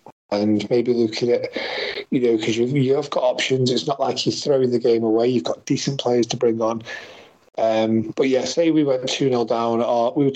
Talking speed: 215 wpm